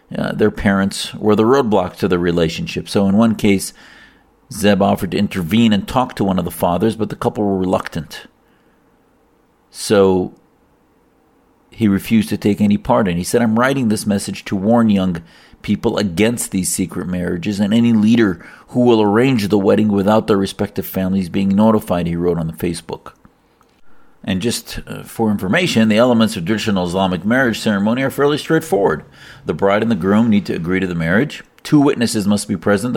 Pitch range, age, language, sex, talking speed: 90-110 Hz, 50-69, English, male, 180 wpm